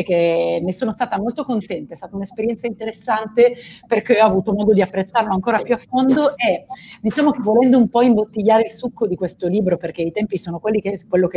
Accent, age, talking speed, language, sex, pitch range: native, 30-49, 200 wpm, Italian, female, 180-230 Hz